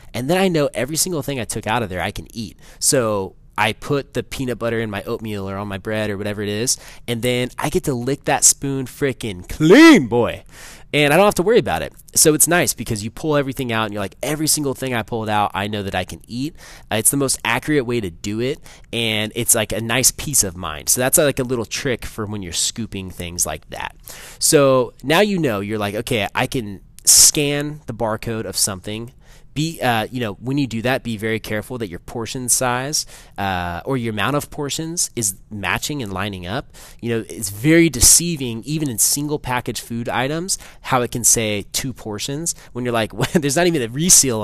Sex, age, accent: male, 20-39, American